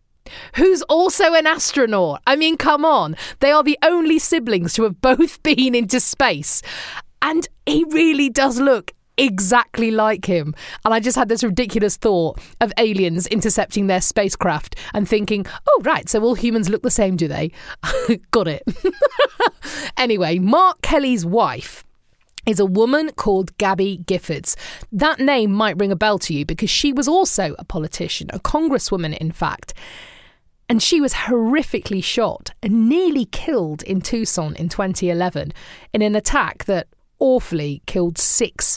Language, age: English, 30-49